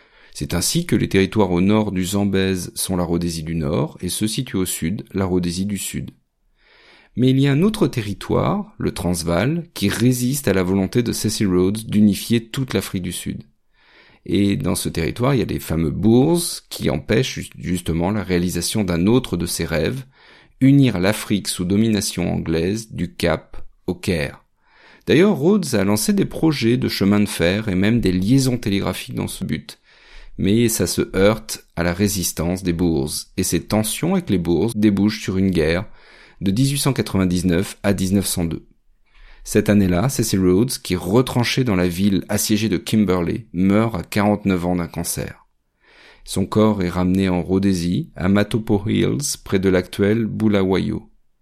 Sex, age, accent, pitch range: male, 40-59, French, 90-115 Hz